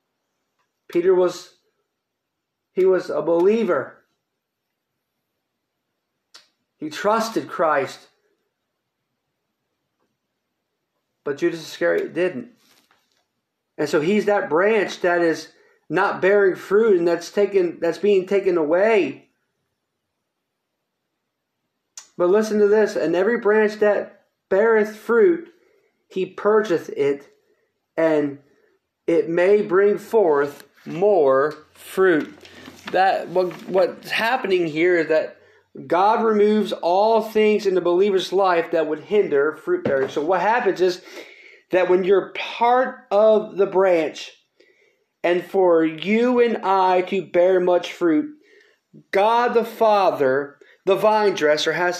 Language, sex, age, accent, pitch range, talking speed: English, male, 40-59, American, 180-295 Hz, 110 wpm